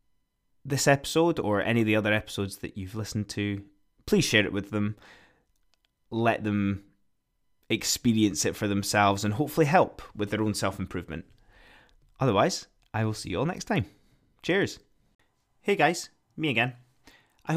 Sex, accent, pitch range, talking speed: male, British, 100-130 Hz, 150 wpm